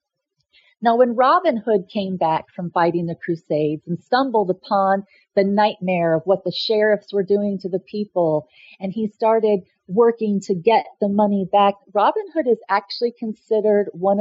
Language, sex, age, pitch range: English, female, 40-59, 175-230 Hz